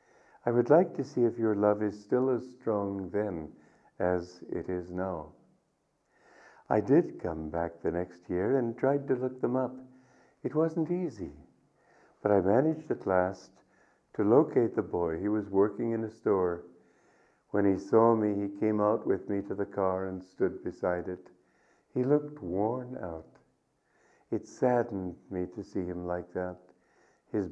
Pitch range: 90-120 Hz